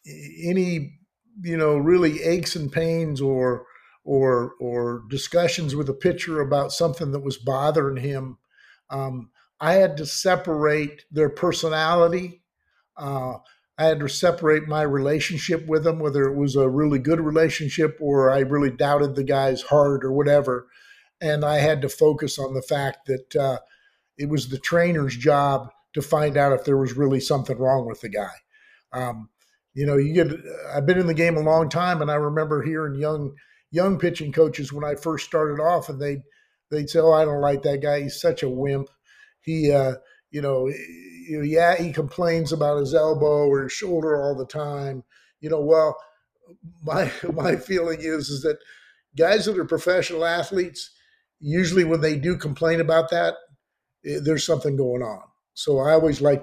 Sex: male